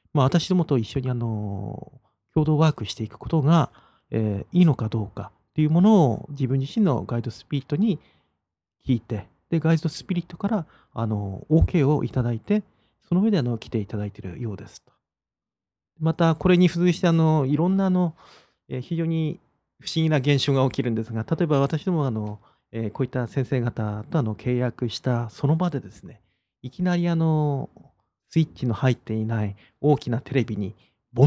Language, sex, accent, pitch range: Japanese, male, native, 110-160 Hz